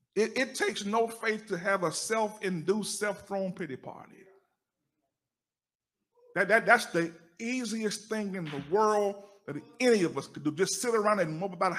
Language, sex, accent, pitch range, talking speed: English, male, American, 185-255 Hz, 175 wpm